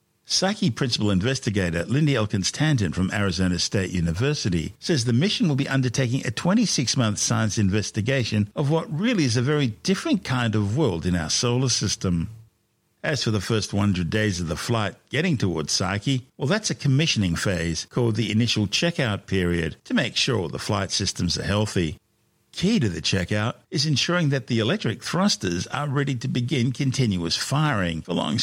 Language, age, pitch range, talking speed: English, 60-79, 95-125 Hz, 170 wpm